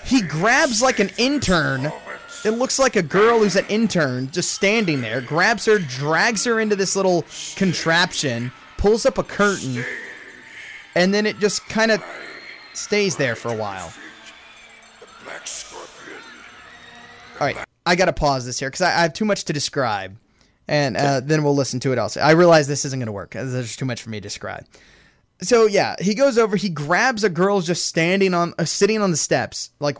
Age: 20-39